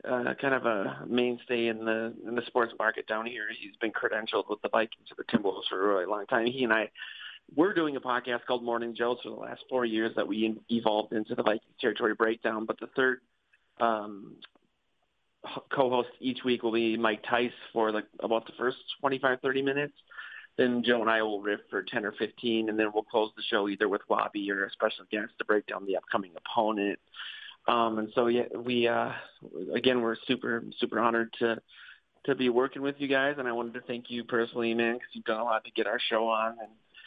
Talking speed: 220 wpm